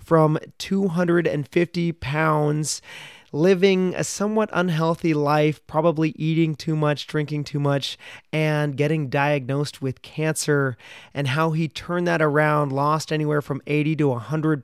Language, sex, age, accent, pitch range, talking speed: English, male, 30-49, American, 145-170 Hz, 130 wpm